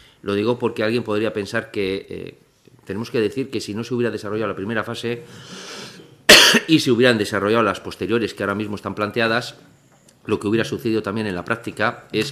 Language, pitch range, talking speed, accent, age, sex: Spanish, 95-125 Hz, 195 wpm, Spanish, 40-59, male